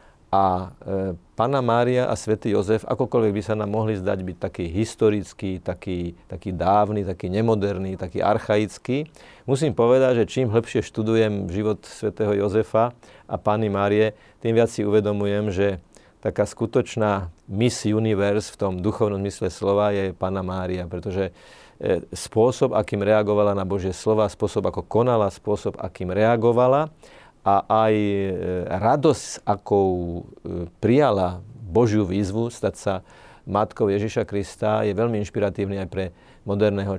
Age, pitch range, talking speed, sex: 40-59, 100-110 Hz, 135 wpm, male